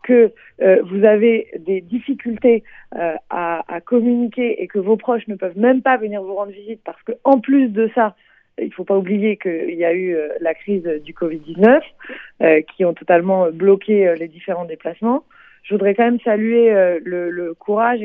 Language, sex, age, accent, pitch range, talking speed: French, female, 30-49, French, 170-215 Hz, 195 wpm